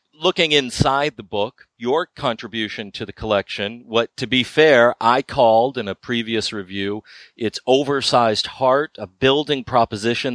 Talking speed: 145 wpm